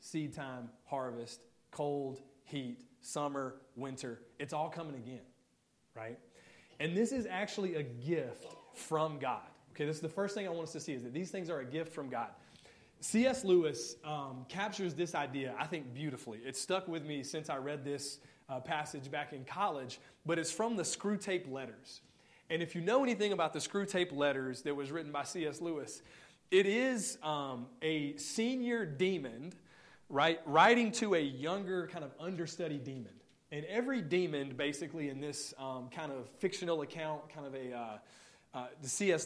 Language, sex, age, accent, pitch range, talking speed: English, male, 30-49, American, 135-175 Hz, 180 wpm